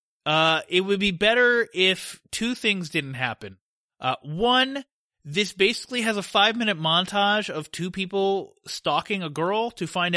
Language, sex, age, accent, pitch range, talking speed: English, male, 30-49, American, 155-205 Hz, 155 wpm